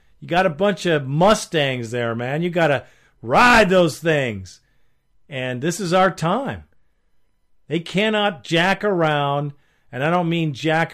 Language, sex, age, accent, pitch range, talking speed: English, male, 50-69, American, 135-180 Hz, 155 wpm